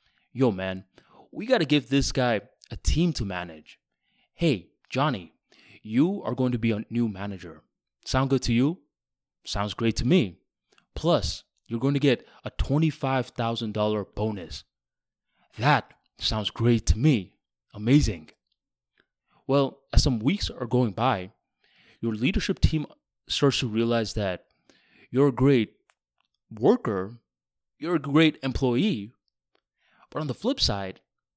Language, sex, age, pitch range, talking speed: English, male, 20-39, 100-135 Hz, 135 wpm